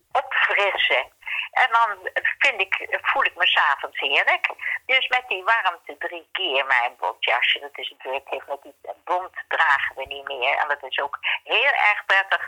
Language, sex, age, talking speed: Dutch, female, 50-69, 180 wpm